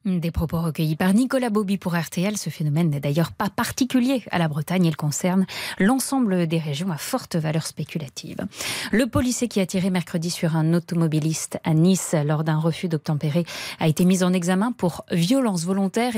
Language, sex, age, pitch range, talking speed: French, female, 20-39, 160-210 Hz, 180 wpm